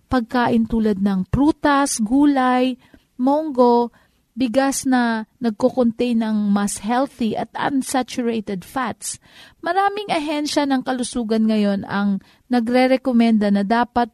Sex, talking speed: female, 105 wpm